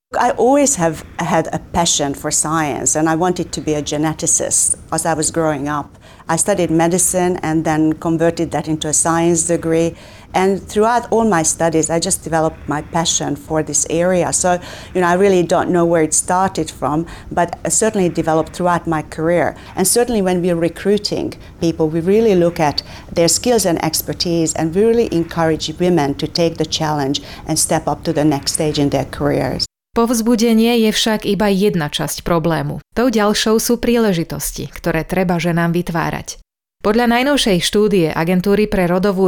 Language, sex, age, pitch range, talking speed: Slovak, female, 40-59, 160-195 Hz, 175 wpm